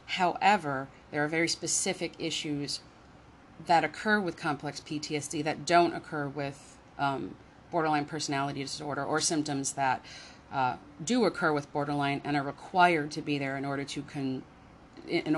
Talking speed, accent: 150 wpm, American